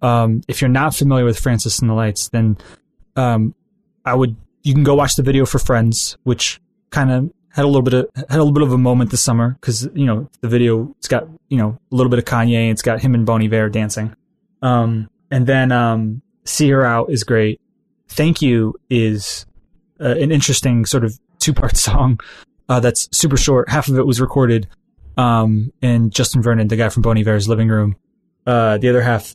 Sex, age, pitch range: male, 20-39, 115-135 Hz